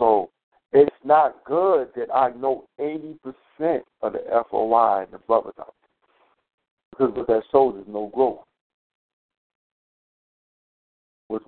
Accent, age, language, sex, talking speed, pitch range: American, 60-79, English, male, 120 wpm, 105-125 Hz